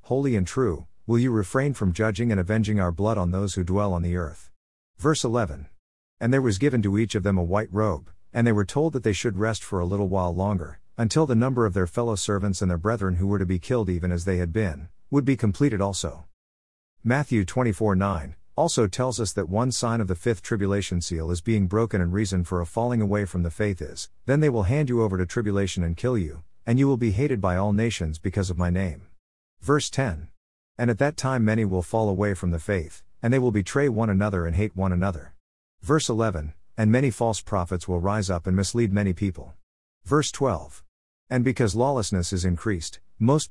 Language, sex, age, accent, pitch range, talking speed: English, male, 50-69, American, 90-115 Hz, 225 wpm